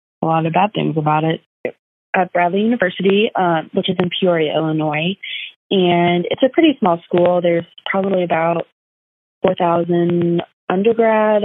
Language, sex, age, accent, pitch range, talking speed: English, female, 20-39, American, 160-190 Hz, 140 wpm